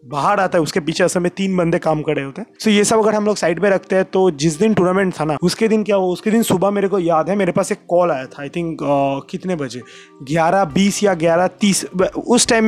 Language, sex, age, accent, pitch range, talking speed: Hindi, male, 20-39, native, 170-200 Hz, 270 wpm